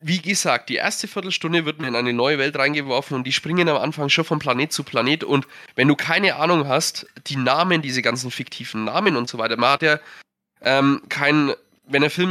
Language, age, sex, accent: German, 20-39, male, German